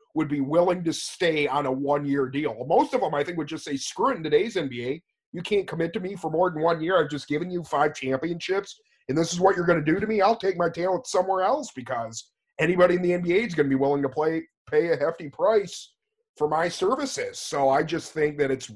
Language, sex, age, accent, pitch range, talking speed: English, male, 30-49, American, 145-195 Hz, 250 wpm